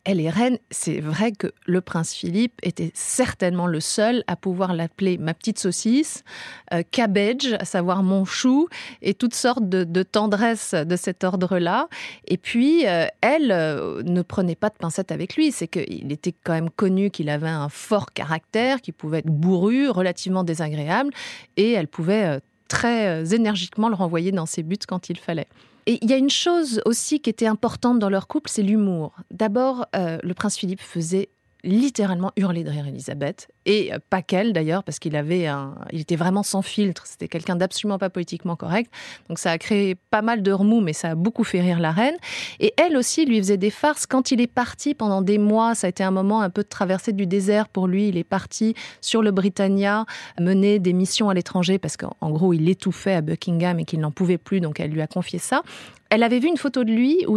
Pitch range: 175-225 Hz